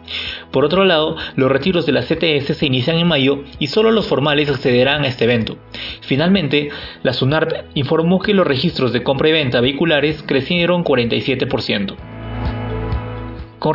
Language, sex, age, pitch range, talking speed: Spanish, male, 30-49, 130-175 Hz, 155 wpm